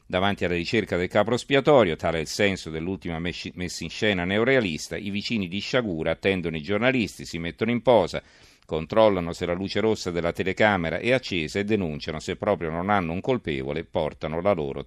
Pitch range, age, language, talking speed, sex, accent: 85-110 Hz, 50-69, Italian, 190 wpm, male, native